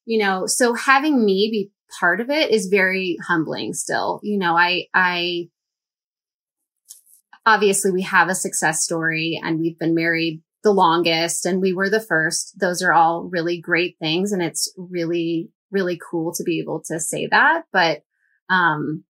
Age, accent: 20-39, American